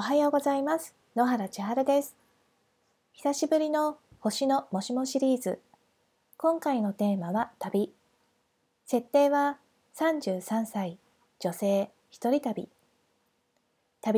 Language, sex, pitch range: Japanese, female, 210-290 Hz